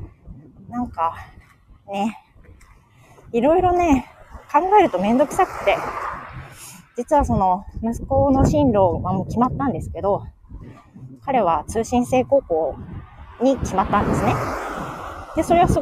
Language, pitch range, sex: Japanese, 185-250 Hz, female